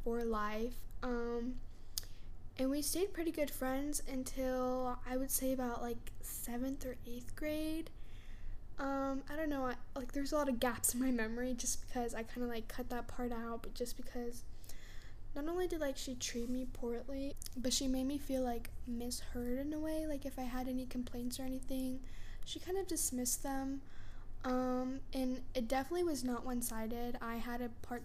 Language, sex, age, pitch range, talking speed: English, female, 10-29, 235-270 Hz, 185 wpm